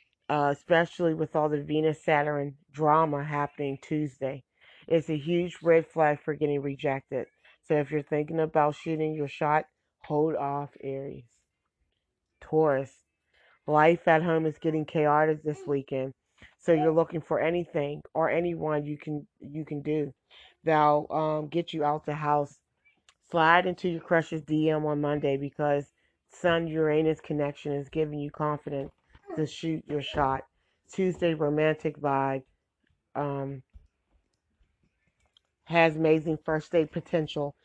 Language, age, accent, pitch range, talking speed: English, 30-49, American, 140-160 Hz, 135 wpm